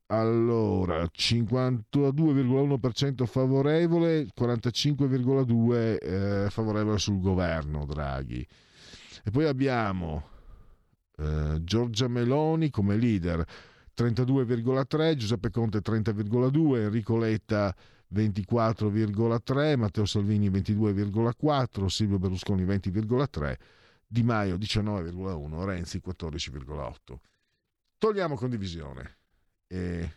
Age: 50-69